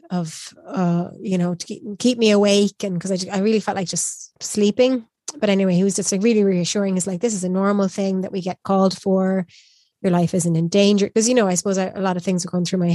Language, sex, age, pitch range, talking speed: English, female, 20-39, 180-205 Hz, 265 wpm